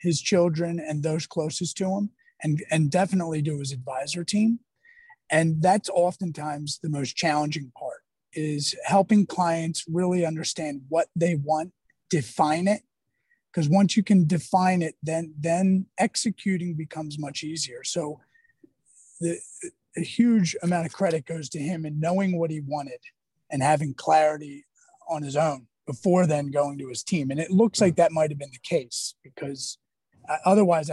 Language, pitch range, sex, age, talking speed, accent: English, 150-185 Hz, male, 30-49, 160 wpm, American